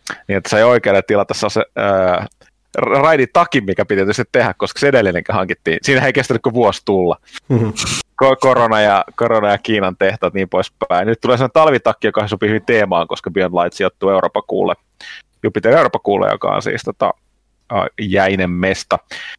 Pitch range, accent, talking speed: 100-125 Hz, native, 180 wpm